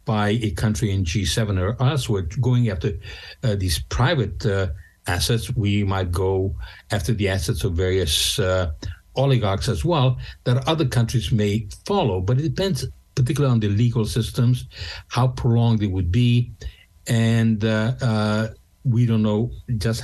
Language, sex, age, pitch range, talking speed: English, male, 60-79, 100-125 Hz, 155 wpm